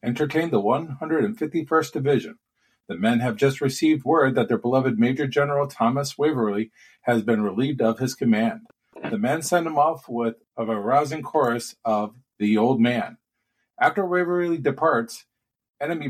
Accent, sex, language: American, male, English